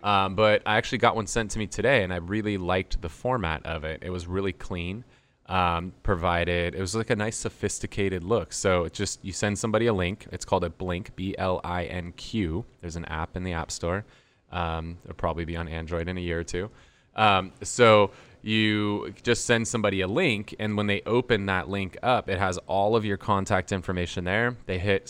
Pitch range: 90-110 Hz